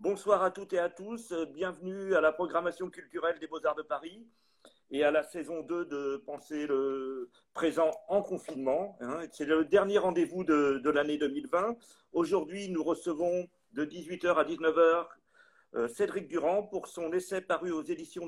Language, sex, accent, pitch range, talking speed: French, male, French, 160-210 Hz, 160 wpm